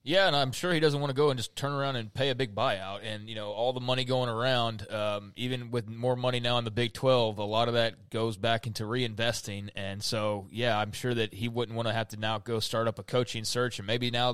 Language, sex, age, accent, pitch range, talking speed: English, male, 20-39, American, 115-130 Hz, 275 wpm